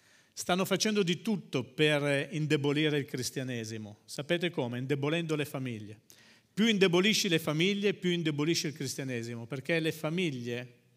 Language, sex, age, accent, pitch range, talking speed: Italian, male, 50-69, native, 130-175 Hz, 130 wpm